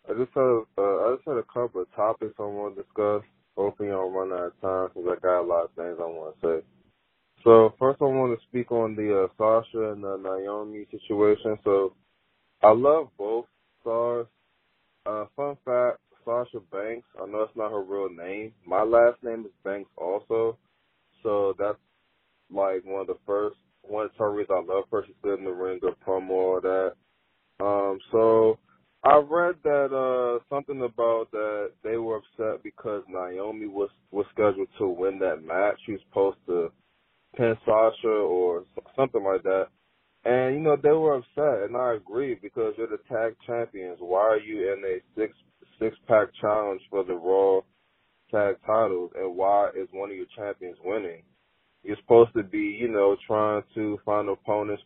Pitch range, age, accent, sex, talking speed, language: 100-125 Hz, 20-39, American, male, 185 wpm, English